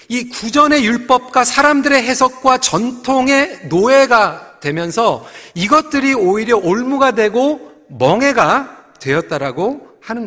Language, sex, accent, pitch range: Korean, male, native, 210-275 Hz